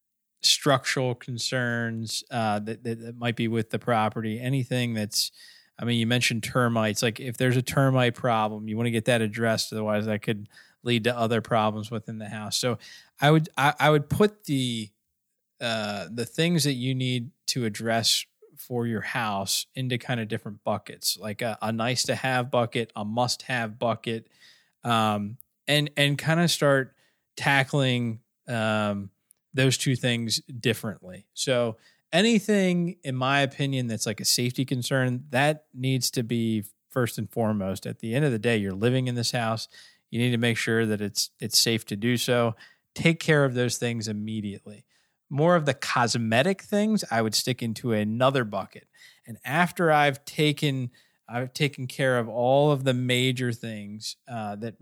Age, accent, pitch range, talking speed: 20-39, American, 110-135 Hz, 175 wpm